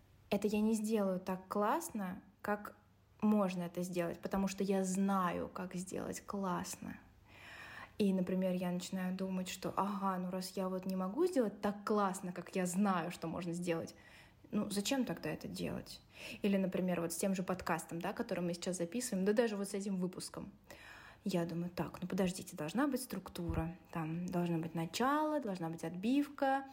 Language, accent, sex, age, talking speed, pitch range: Russian, native, female, 20-39, 175 wpm, 180-230 Hz